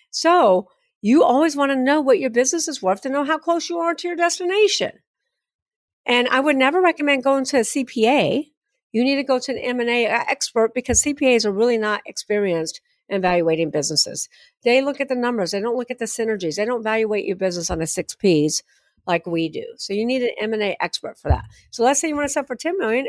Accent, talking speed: American, 225 wpm